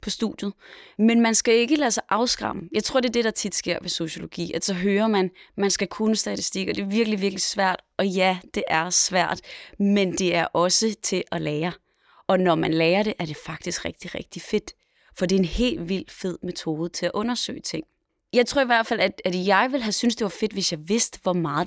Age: 20-39